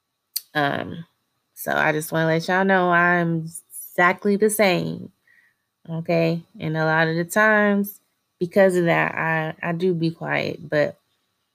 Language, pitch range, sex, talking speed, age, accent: English, 125-175 Hz, female, 150 wpm, 20-39, American